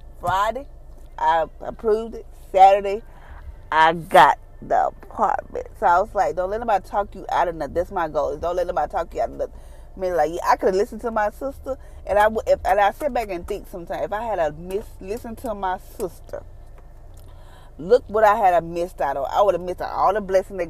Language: English